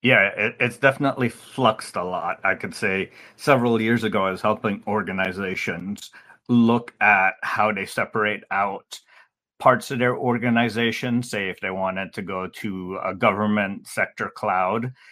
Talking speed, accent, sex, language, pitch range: 145 wpm, American, male, English, 95-120 Hz